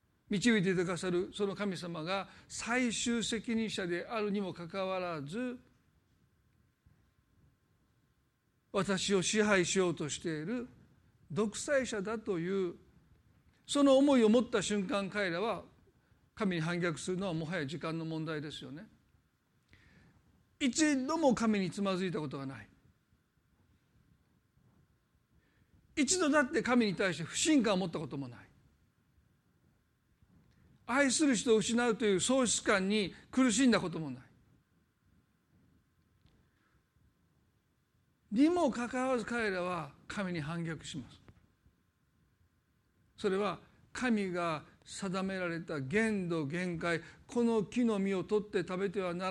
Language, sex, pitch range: Japanese, male, 170-230 Hz